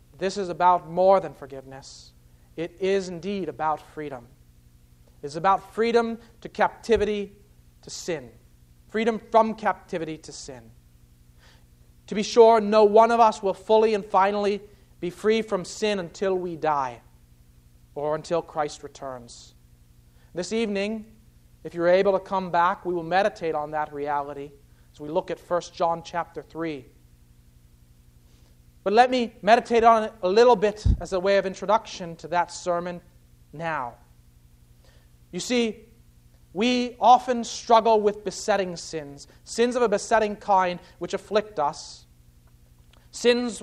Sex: male